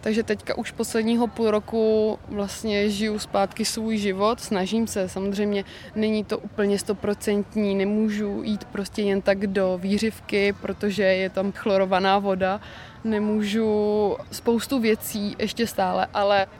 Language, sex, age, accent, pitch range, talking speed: Czech, female, 20-39, native, 195-220 Hz, 130 wpm